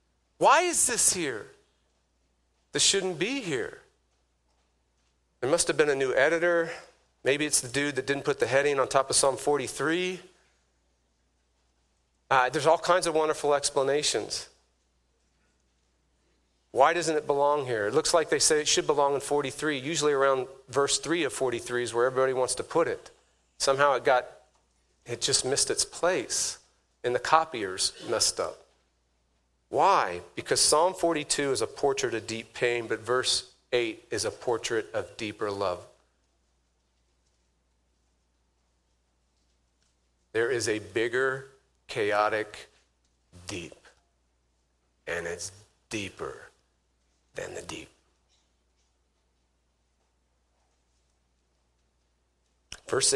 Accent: American